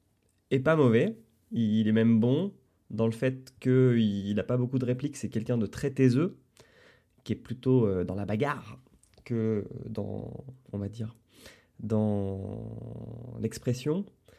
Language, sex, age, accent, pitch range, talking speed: French, male, 20-39, French, 100-130 Hz, 125 wpm